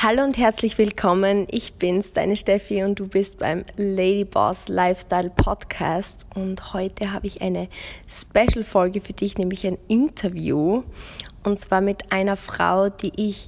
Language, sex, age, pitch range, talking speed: German, female, 20-39, 195-225 Hz, 145 wpm